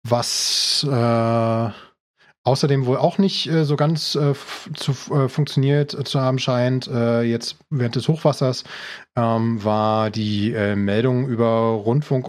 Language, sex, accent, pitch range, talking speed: German, male, German, 110-125 Hz, 135 wpm